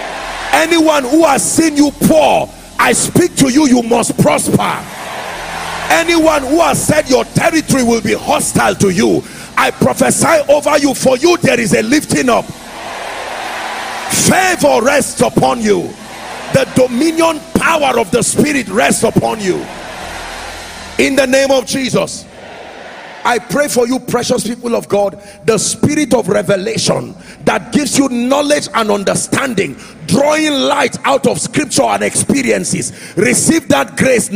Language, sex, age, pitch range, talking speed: English, male, 40-59, 225-290 Hz, 140 wpm